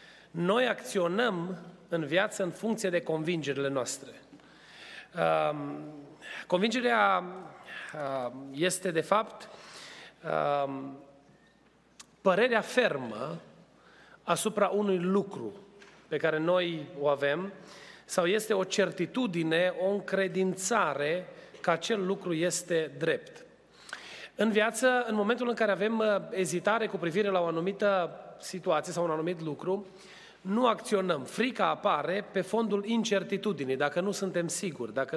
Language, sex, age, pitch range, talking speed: Romanian, male, 30-49, 160-200 Hz, 110 wpm